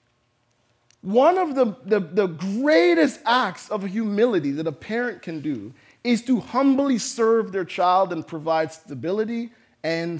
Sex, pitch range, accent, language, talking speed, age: male, 170-275 Hz, American, English, 140 wpm, 40-59